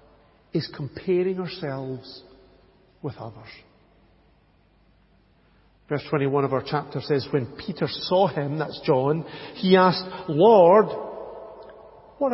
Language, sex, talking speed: English, male, 100 wpm